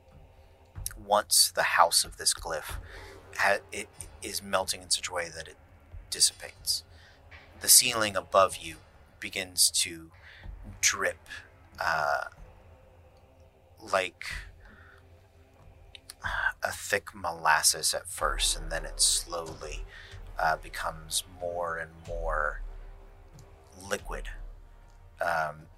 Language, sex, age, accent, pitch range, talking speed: English, male, 30-49, American, 85-95 Hz, 90 wpm